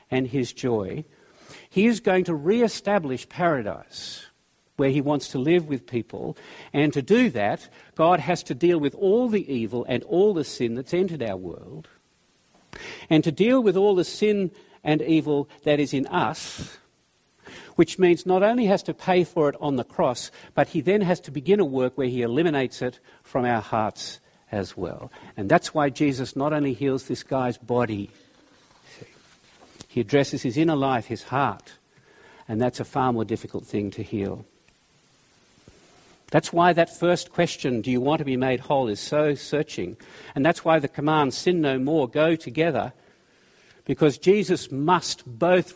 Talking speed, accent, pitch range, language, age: 175 wpm, Australian, 125-175 Hz, English, 50-69